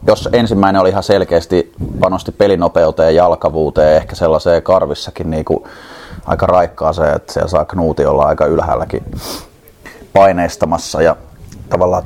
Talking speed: 125 wpm